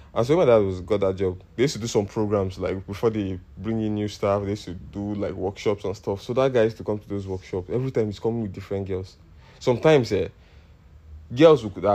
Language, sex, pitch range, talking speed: English, male, 90-110 Hz, 245 wpm